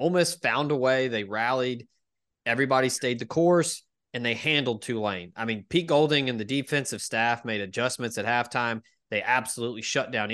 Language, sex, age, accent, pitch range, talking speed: English, male, 20-39, American, 115-145 Hz, 175 wpm